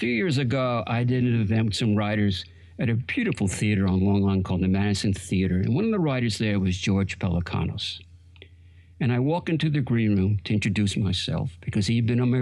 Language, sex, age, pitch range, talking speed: English, male, 60-79, 95-135 Hz, 220 wpm